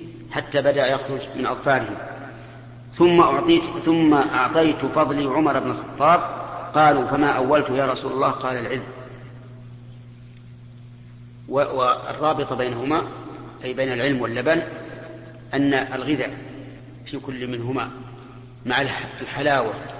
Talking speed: 100 wpm